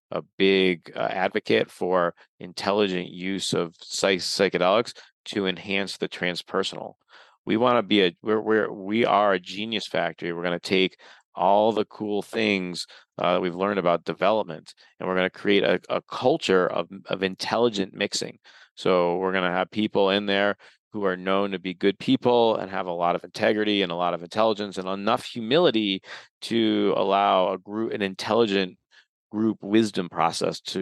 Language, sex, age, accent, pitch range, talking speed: English, male, 30-49, American, 90-105 Hz, 175 wpm